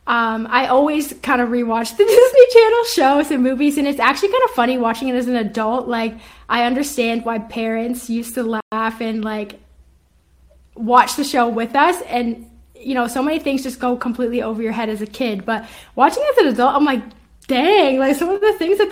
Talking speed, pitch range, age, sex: 215 wpm, 230-270 Hz, 10-29, female